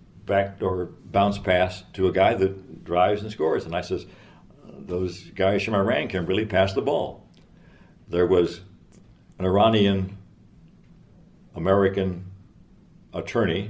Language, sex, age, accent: English, male, 60-79, American